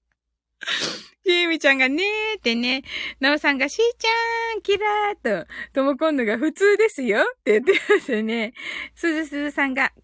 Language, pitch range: Japanese, 270-410 Hz